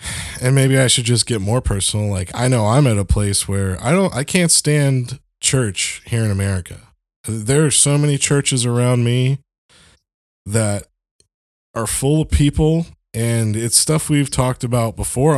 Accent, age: American, 20-39